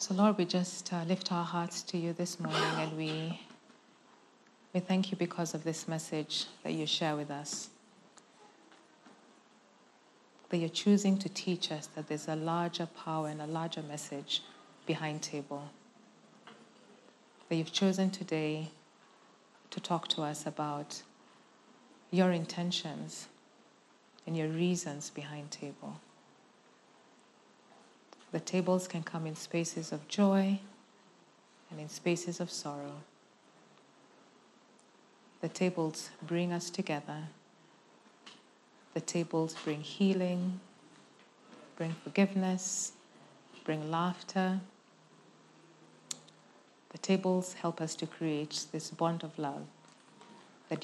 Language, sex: English, female